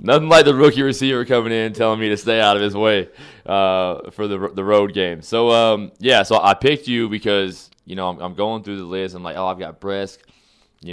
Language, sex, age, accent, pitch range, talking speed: English, male, 20-39, American, 85-100 Hz, 240 wpm